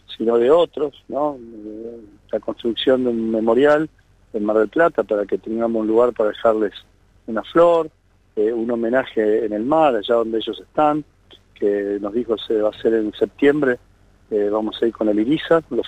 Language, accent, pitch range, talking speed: Spanish, Argentinian, 105-135 Hz, 185 wpm